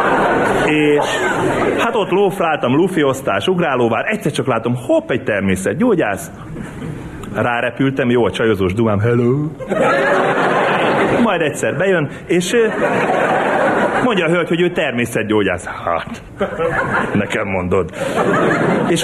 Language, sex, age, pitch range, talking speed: Hungarian, male, 30-49, 125-190 Hz, 105 wpm